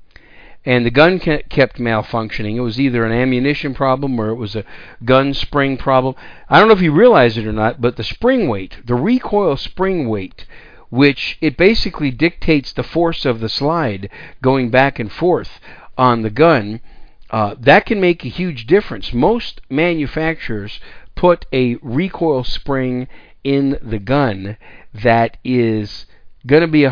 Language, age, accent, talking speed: English, 50-69, American, 165 wpm